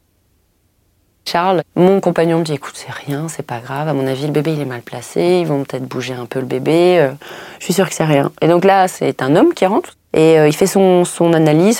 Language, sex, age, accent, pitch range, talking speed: French, female, 30-49, French, 135-175 Hz, 255 wpm